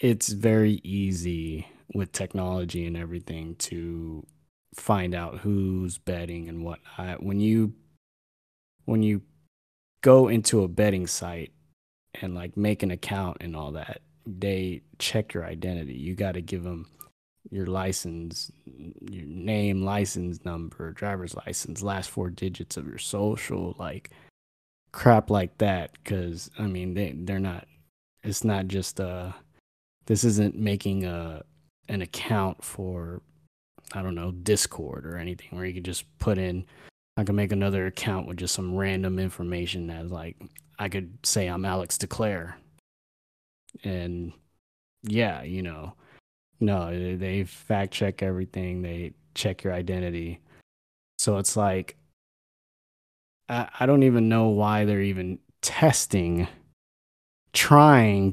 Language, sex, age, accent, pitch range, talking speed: English, male, 20-39, American, 85-100 Hz, 135 wpm